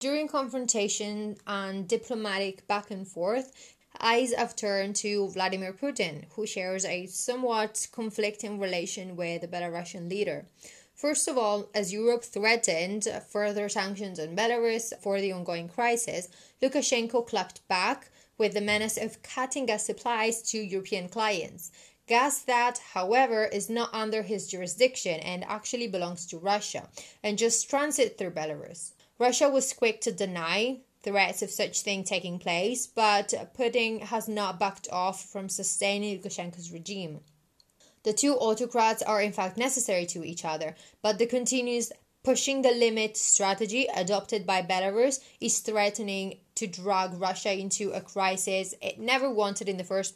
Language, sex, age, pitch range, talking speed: English, female, 20-39, 190-235 Hz, 145 wpm